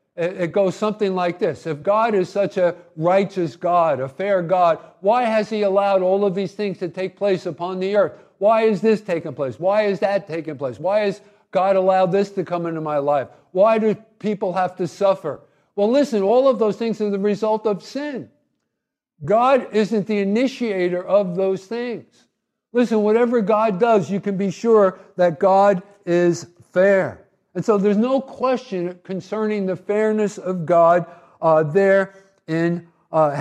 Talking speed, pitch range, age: 180 wpm, 175-215 Hz, 50-69